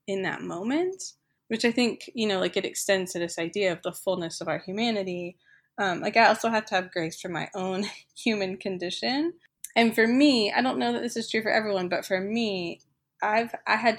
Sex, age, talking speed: female, 20-39, 220 wpm